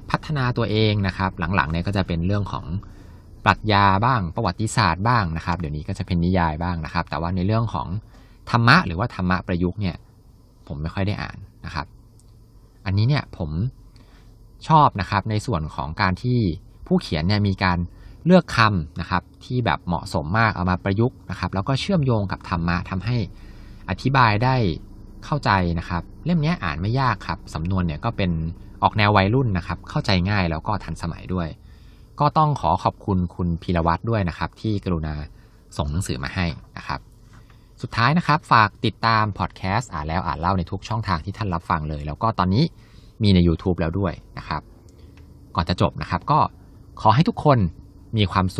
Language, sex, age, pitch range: Thai, male, 20-39, 85-110 Hz